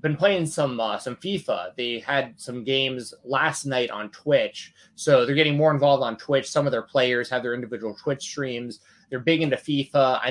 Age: 20-39